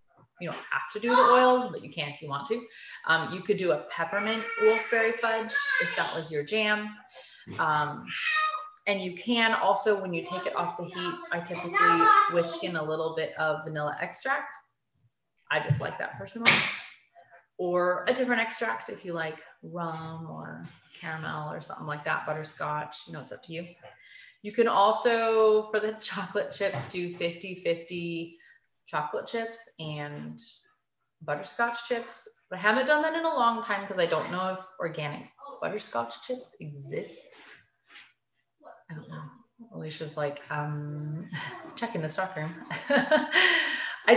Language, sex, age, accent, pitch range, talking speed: English, female, 30-49, American, 165-240 Hz, 160 wpm